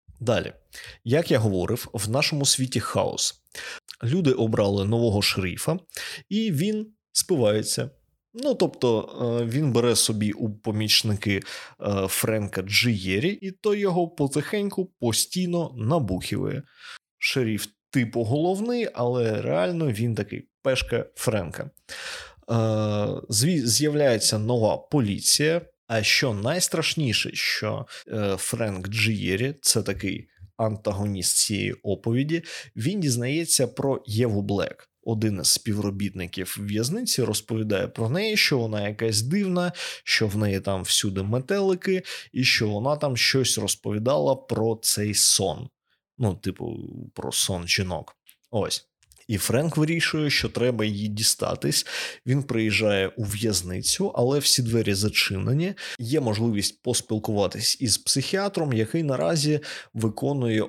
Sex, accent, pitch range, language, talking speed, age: male, native, 105-145 Hz, Ukrainian, 115 wpm, 20-39